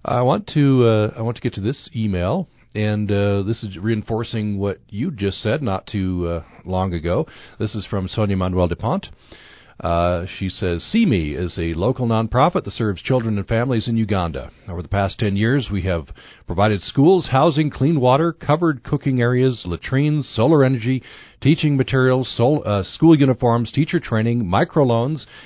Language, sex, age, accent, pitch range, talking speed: English, male, 50-69, American, 100-130 Hz, 170 wpm